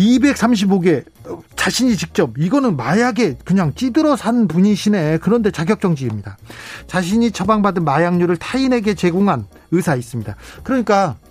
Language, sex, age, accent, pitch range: Korean, male, 40-59, native, 155-220 Hz